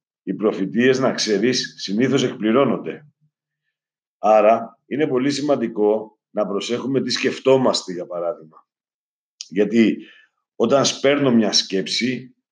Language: Greek